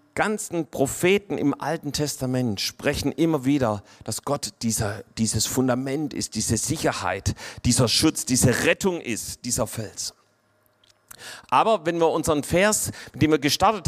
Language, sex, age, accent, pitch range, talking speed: German, male, 40-59, German, 140-180 Hz, 140 wpm